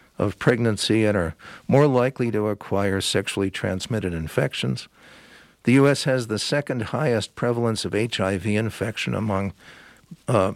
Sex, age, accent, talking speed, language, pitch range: male, 60-79, American, 130 wpm, English, 95-130 Hz